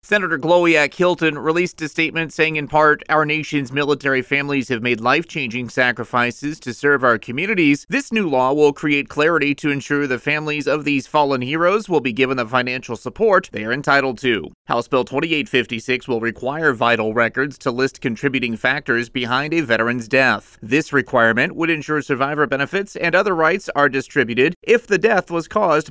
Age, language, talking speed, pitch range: 30-49, English, 175 wpm, 130-160 Hz